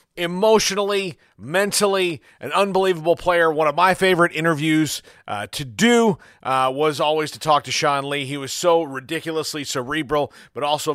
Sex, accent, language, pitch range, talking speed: male, American, English, 130-165 Hz, 155 wpm